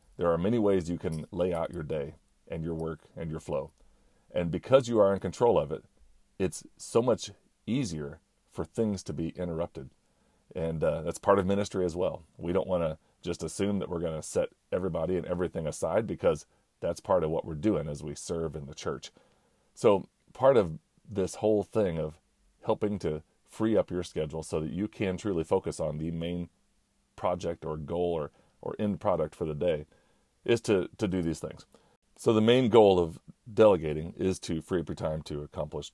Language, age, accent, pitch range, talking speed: English, 40-59, American, 80-100 Hz, 200 wpm